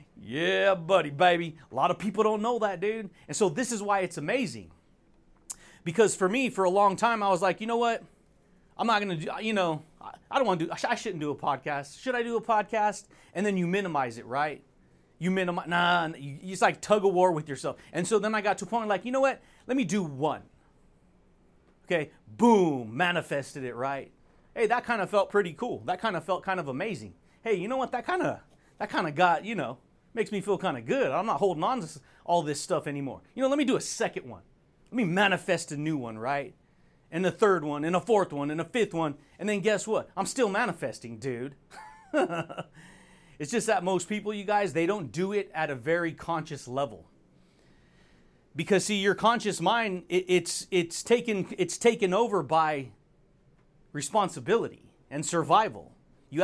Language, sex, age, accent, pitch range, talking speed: English, male, 30-49, American, 150-210 Hz, 215 wpm